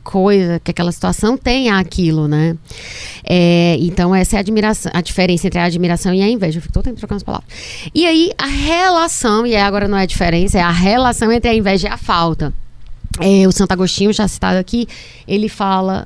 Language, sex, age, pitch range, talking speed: Portuguese, female, 20-39, 185-255 Hz, 200 wpm